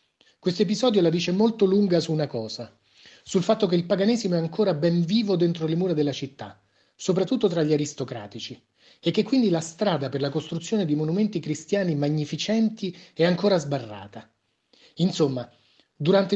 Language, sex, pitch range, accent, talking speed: Italian, male, 130-190 Hz, native, 160 wpm